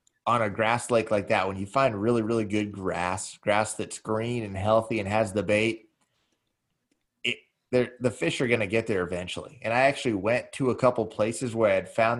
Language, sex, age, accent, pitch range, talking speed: English, male, 30-49, American, 105-125 Hz, 210 wpm